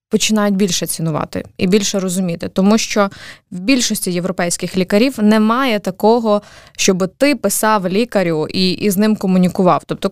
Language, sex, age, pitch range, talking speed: Ukrainian, female, 20-39, 180-225 Hz, 140 wpm